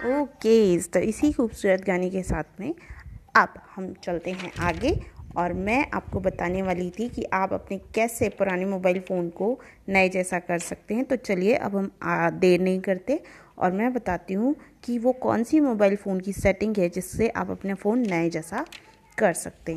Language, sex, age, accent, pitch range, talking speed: Hindi, female, 30-49, native, 185-240 Hz, 185 wpm